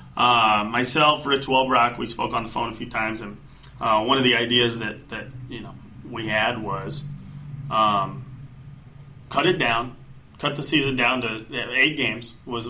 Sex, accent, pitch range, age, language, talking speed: male, American, 115-135 Hz, 30-49, English, 175 wpm